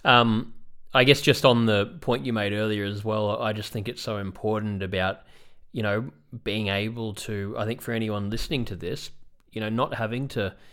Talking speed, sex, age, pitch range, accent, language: 200 wpm, male, 20-39, 95-115 Hz, Australian, English